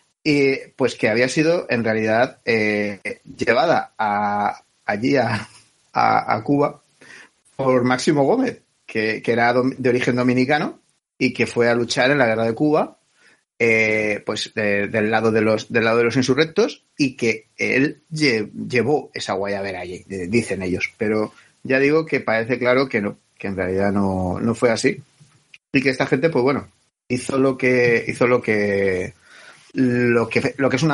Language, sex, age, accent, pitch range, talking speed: Spanish, male, 30-49, Spanish, 110-135 Hz, 175 wpm